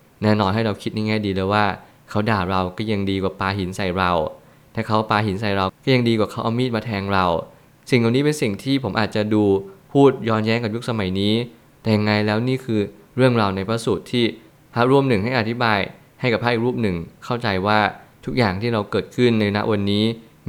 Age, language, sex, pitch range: 20-39, Thai, male, 100-120 Hz